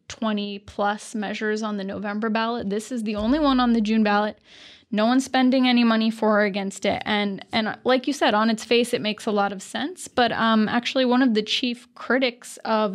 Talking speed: 220 wpm